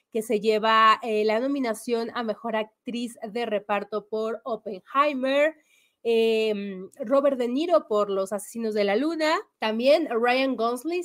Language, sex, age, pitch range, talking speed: English, female, 30-49, 210-265 Hz, 140 wpm